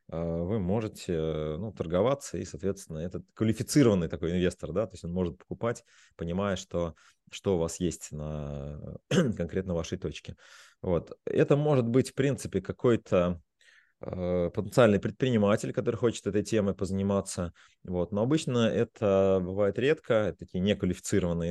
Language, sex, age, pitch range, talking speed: Russian, male, 30-49, 85-110 Hz, 140 wpm